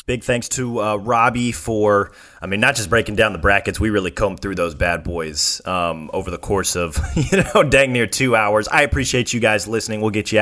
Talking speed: 230 wpm